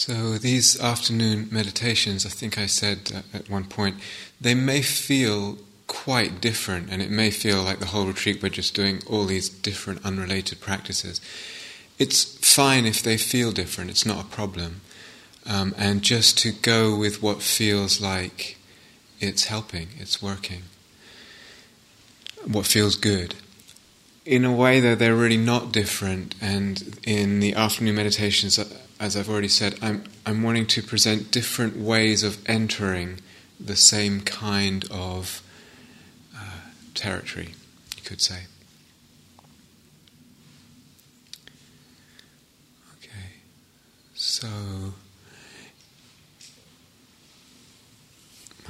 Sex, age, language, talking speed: male, 30-49, English, 120 wpm